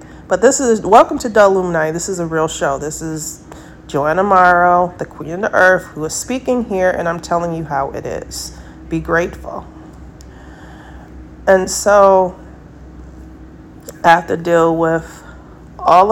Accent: American